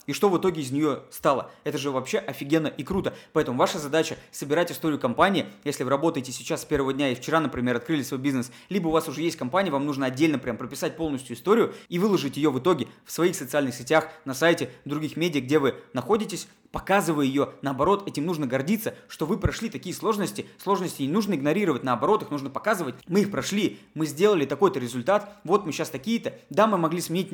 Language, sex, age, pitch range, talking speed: Russian, male, 20-39, 140-185 Hz, 210 wpm